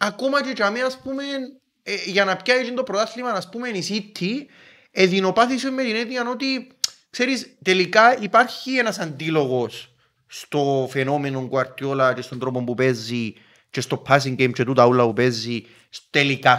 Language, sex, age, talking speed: Greek, male, 30-49, 135 wpm